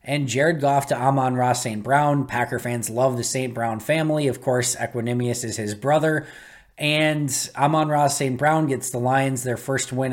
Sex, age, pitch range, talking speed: male, 20-39, 125-170 Hz, 190 wpm